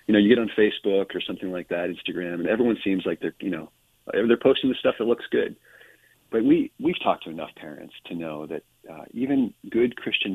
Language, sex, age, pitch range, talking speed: English, male, 40-59, 85-110 Hz, 225 wpm